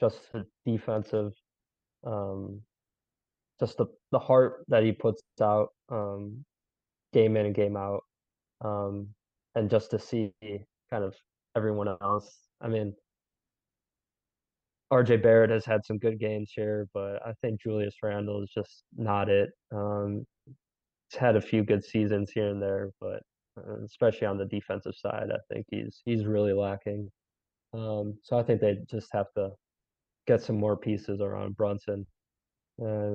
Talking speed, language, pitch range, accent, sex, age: 150 wpm, English, 100-110 Hz, American, male, 20-39